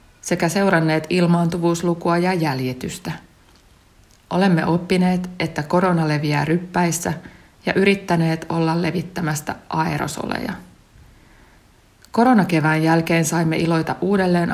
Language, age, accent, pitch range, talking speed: Finnish, 60-79, native, 155-180 Hz, 85 wpm